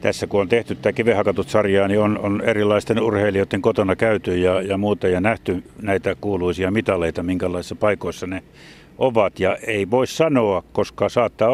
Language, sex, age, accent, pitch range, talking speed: Finnish, male, 60-79, native, 100-120 Hz, 165 wpm